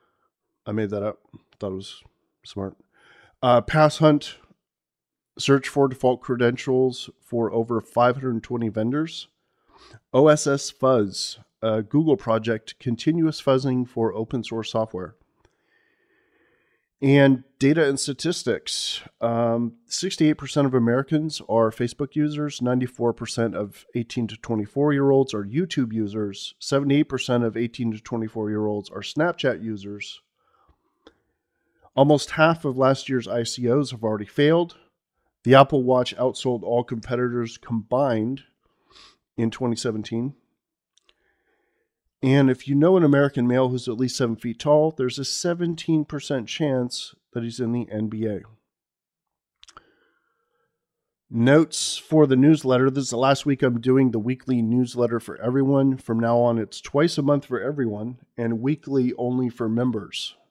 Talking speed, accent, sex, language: 135 wpm, American, male, English